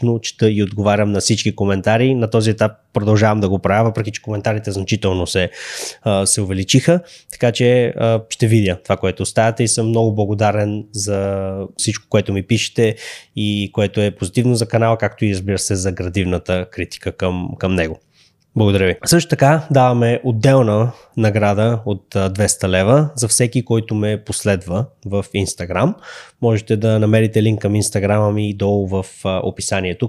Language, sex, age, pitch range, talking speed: Bulgarian, male, 20-39, 100-125 Hz, 160 wpm